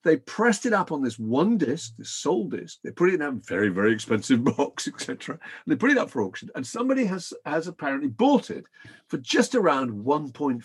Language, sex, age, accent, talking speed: English, male, 50-69, British, 220 wpm